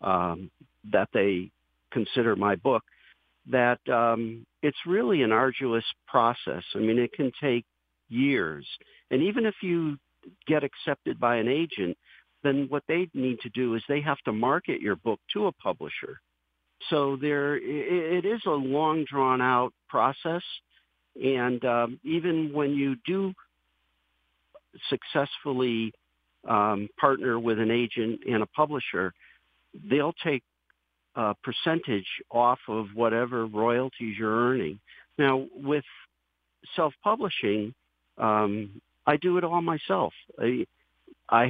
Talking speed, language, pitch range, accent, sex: 125 wpm, English, 105-135 Hz, American, male